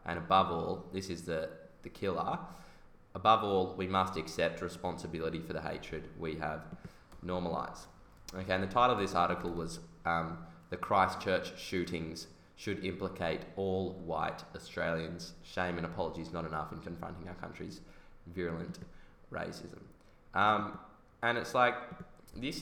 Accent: Australian